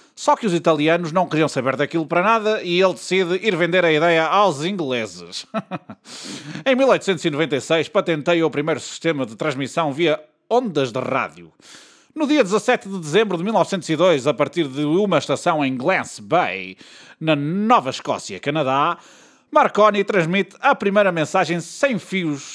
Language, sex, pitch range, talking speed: Portuguese, male, 160-220 Hz, 150 wpm